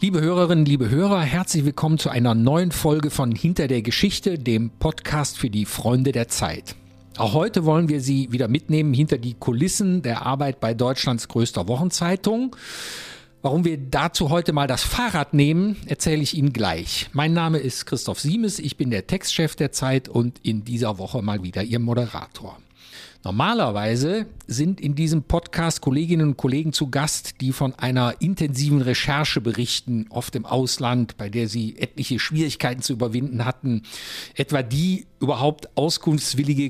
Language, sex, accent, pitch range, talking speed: German, male, German, 120-160 Hz, 160 wpm